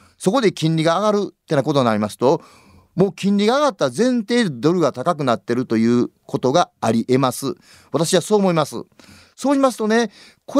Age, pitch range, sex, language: 40-59, 135-215 Hz, male, Japanese